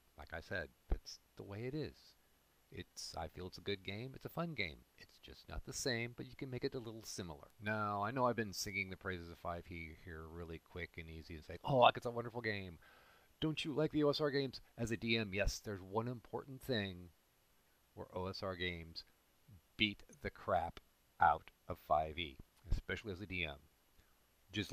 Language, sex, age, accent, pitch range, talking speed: English, male, 40-59, American, 85-115 Hz, 200 wpm